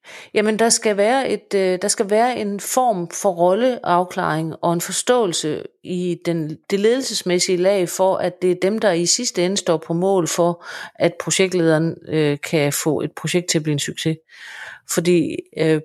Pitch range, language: 160-200 Hz, Danish